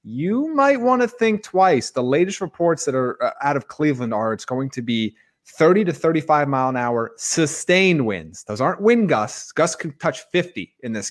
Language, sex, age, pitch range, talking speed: English, male, 30-49, 115-160 Hz, 205 wpm